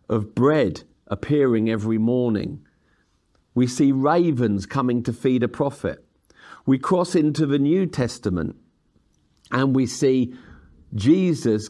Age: 50-69